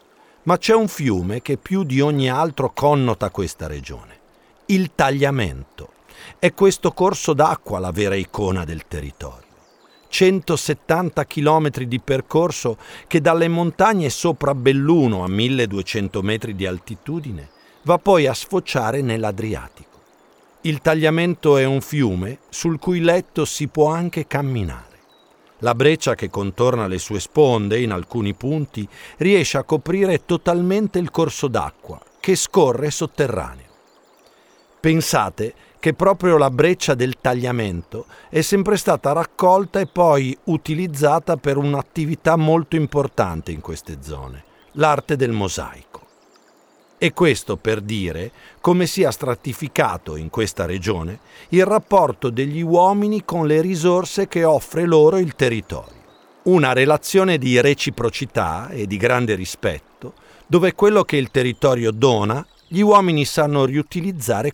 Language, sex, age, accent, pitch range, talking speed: Italian, male, 50-69, native, 110-170 Hz, 130 wpm